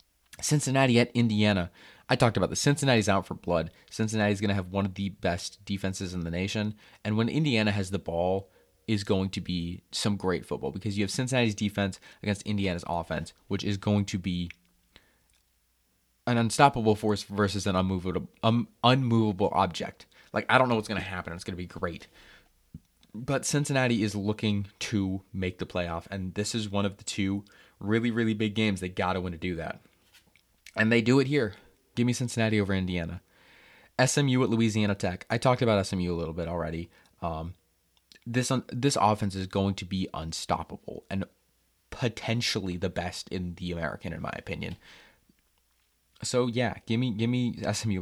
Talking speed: 180 wpm